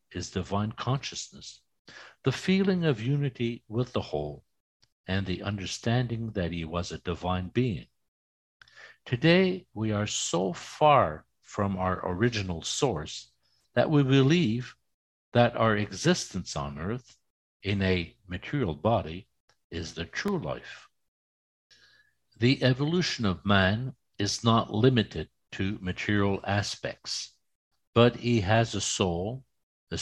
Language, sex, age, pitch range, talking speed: English, male, 60-79, 90-120 Hz, 120 wpm